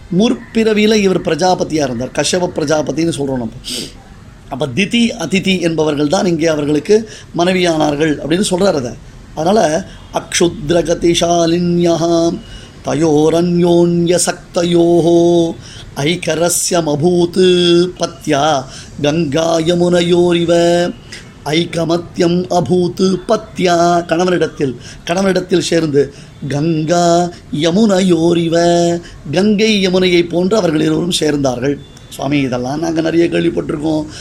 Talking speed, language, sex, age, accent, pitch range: 75 wpm, Tamil, male, 30-49, native, 150-175 Hz